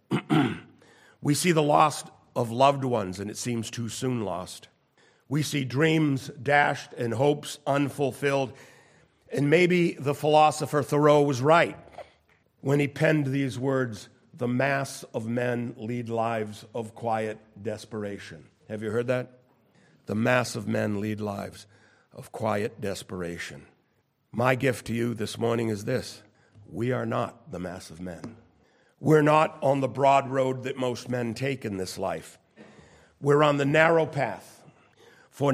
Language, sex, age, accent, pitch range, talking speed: English, male, 50-69, American, 115-145 Hz, 150 wpm